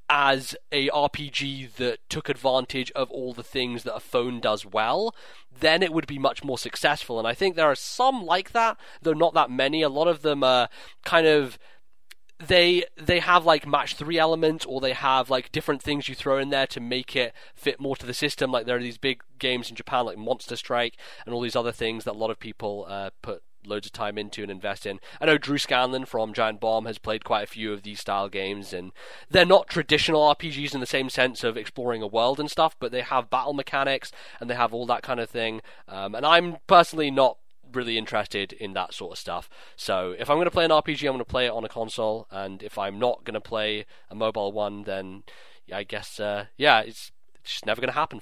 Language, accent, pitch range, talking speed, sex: English, British, 110-145 Hz, 230 wpm, male